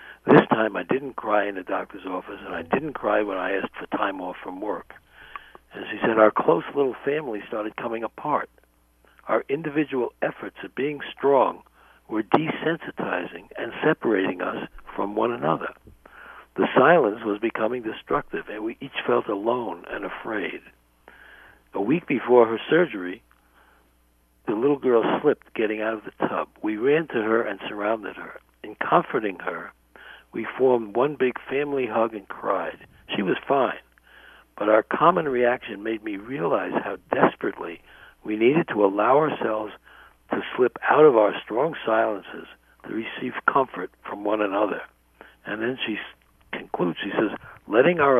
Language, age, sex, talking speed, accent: English, 60-79, male, 160 wpm, American